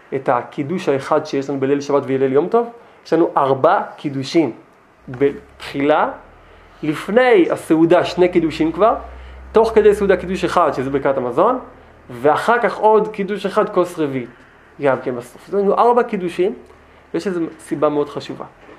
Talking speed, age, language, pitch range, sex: 155 wpm, 20-39, Hebrew, 140-180 Hz, male